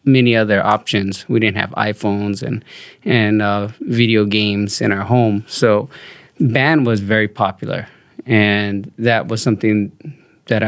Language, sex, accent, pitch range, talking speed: English, male, American, 105-120 Hz, 140 wpm